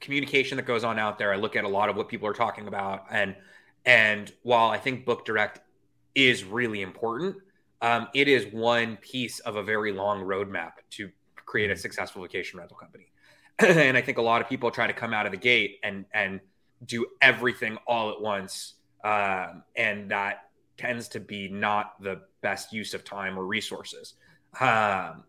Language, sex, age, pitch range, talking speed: English, male, 20-39, 100-125 Hz, 190 wpm